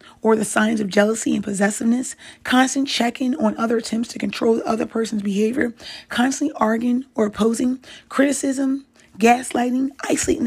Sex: female